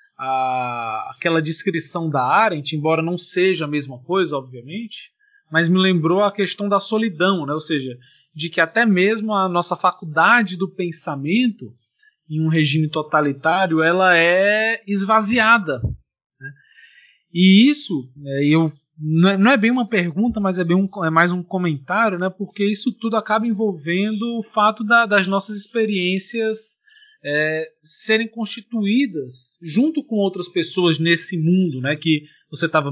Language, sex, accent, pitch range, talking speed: Portuguese, male, Brazilian, 155-215 Hz, 135 wpm